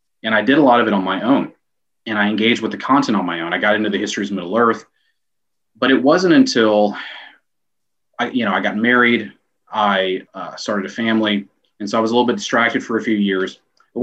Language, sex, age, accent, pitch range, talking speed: English, male, 30-49, American, 100-125 Hz, 235 wpm